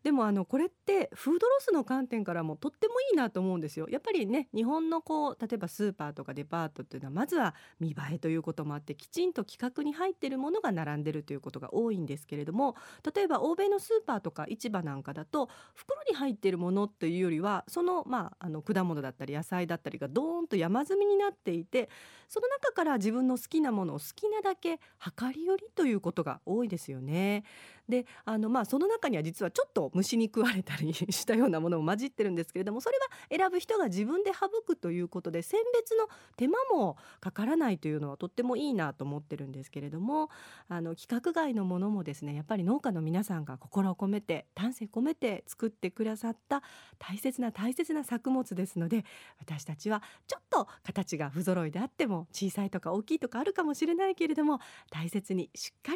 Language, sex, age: Japanese, female, 40-59